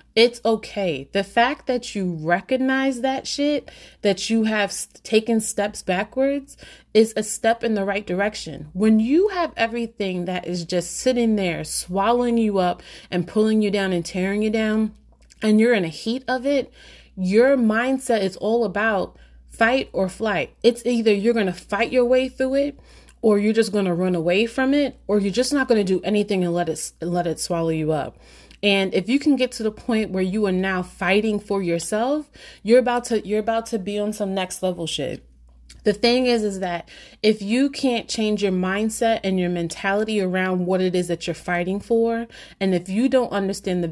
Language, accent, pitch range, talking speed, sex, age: English, American, 185-230 Hz, 200 wpm, female, 30-49